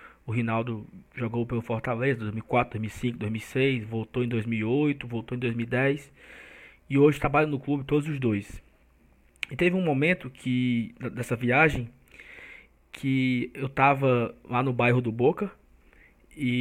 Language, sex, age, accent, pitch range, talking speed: Portuguese, male, 20-39, Brazilian, 125-170 Hz, 140 wpm